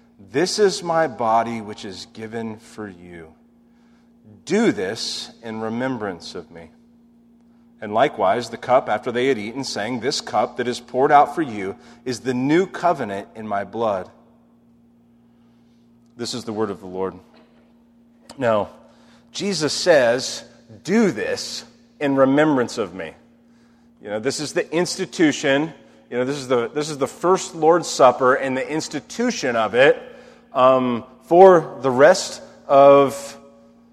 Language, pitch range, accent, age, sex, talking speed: English, 115-170 Hz, American, 40-59, male, 145 wpm